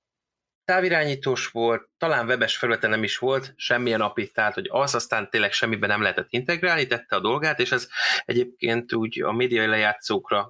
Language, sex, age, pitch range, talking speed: Hungarian, male, 20-39, 105-120 Hz, 160 wpm